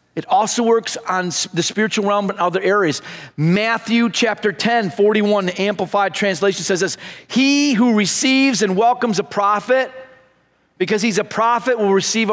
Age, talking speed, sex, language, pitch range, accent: 40-59, 155 wpm, male, English, 195-260 Hz, American